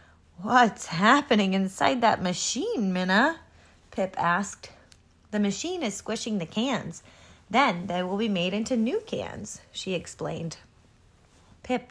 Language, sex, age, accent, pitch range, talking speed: English, female, 30-49, American, 160-235 Hz, 125 wpm